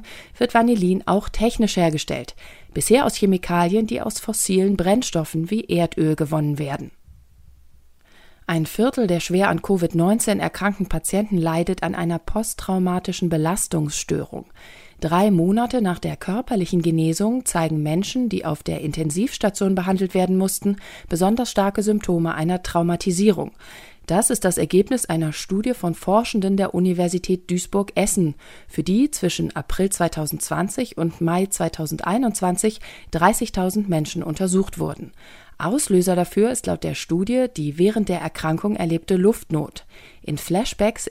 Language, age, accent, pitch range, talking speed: German, 40-59, German, 165-205 Hz, 125 wpm